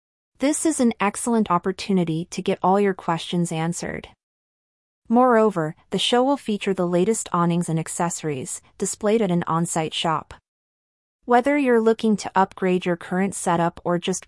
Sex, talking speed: female, 150 wpm